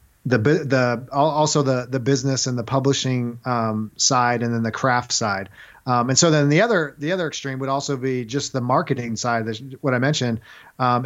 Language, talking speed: English, 200 wpm